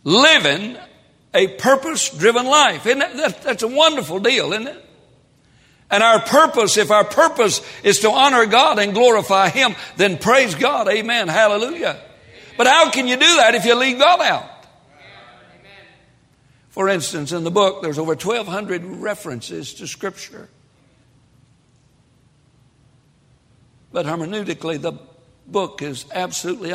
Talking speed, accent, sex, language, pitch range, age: 125 wpm, American, male, English, 150-225 Hz, 60-79